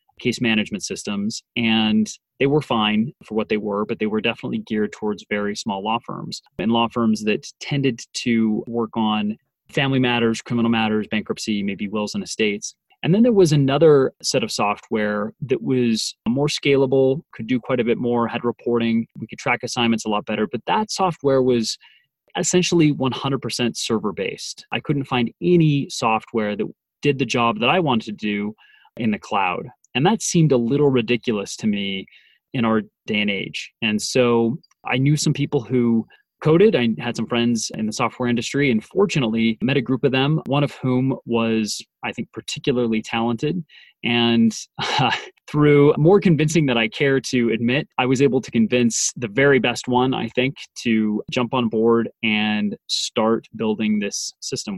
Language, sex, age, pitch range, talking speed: English, male, 30-49, 110-135 Hz, 180 wpm